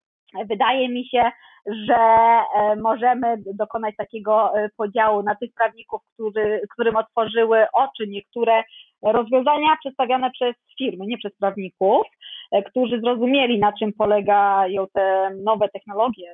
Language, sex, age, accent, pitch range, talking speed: Polish, female, 20-39, native, 205-245 Hz, 115 wpm